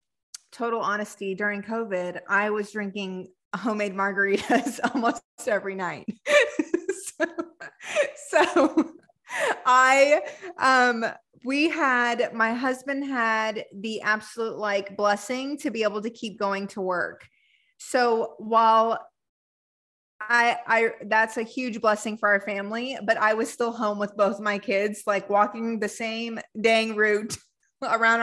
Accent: American